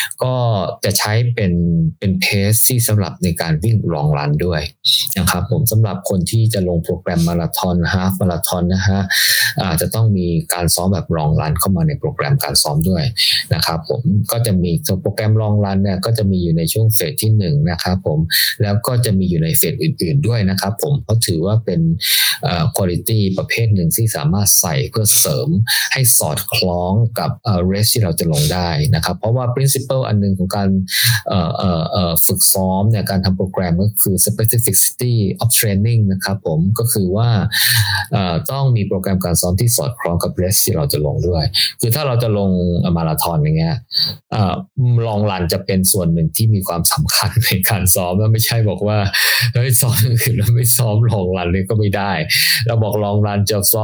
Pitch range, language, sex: 95-115 Hz, Thai, male